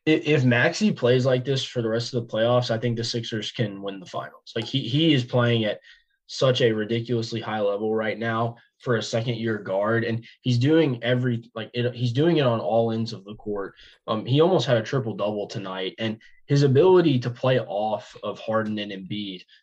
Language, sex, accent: English, male, American